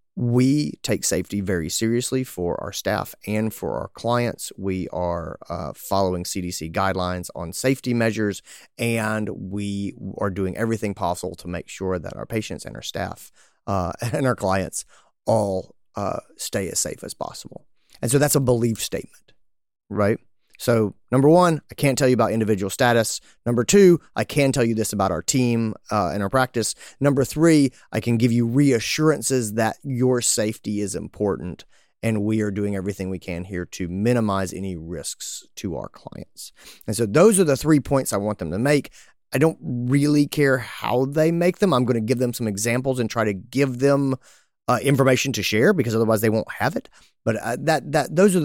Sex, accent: male, American